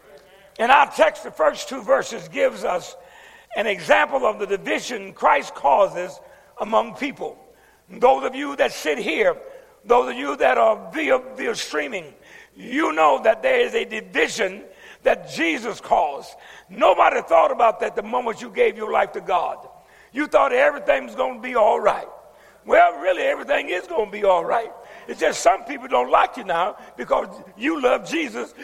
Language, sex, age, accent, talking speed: English, male, 60-79, American, 175 wpm